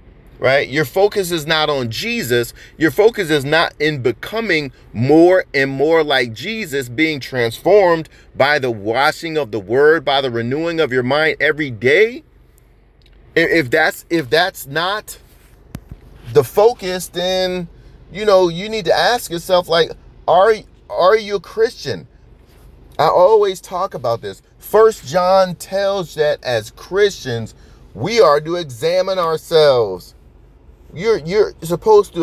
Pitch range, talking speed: 130-195 Hz, 140 wpm